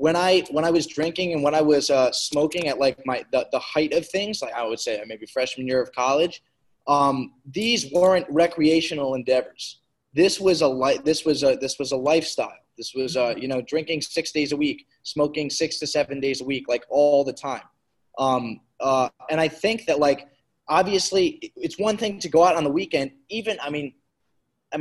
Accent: American